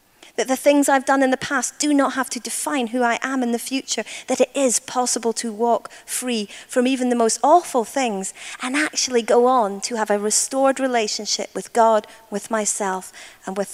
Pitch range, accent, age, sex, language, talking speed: 225-290 Hz, British, 30-49, female, English, 205 wpm